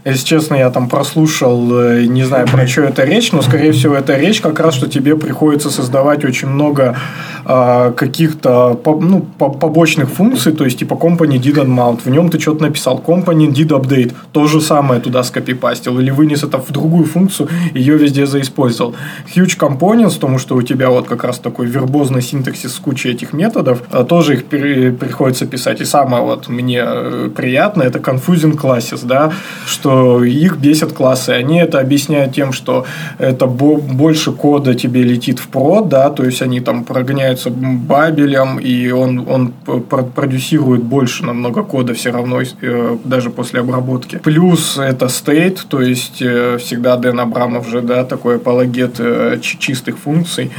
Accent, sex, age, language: native, male, 20-39, Russian